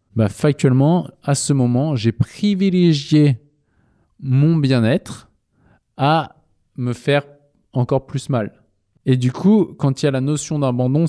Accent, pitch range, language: French, 115-140 Hz, French